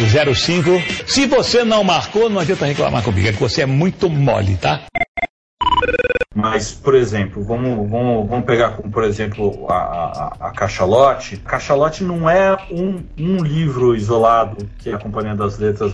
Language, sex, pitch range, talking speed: Portuguese, male, 110-155 Hz, 155 wpm